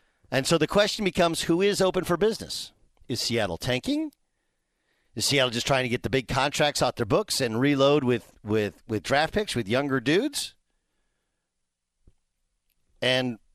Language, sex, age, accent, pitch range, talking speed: English, male, 50-69, American, 115-155 Hz, 160 wpm